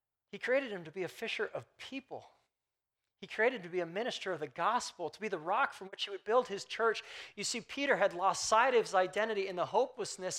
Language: English